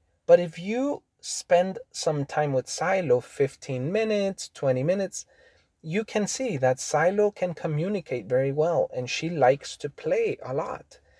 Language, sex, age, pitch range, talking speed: English, male, 30-49, 140-210 Hz, 150 wpm